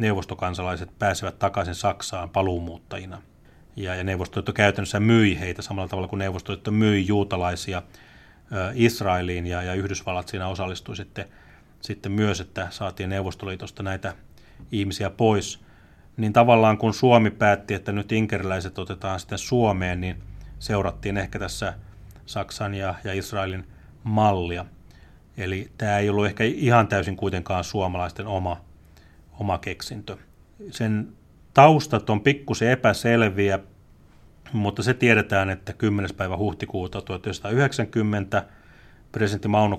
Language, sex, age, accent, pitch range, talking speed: Finnish, male, 30-49, native, 90-105 Hz, 120 wpm